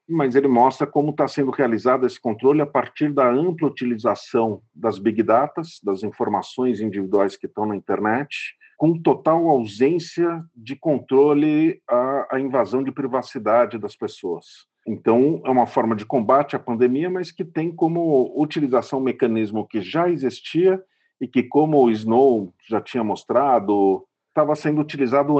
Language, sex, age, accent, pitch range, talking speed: Portuguese, male, 50-69, Brazilian, 120-165 Hz, 150 wpm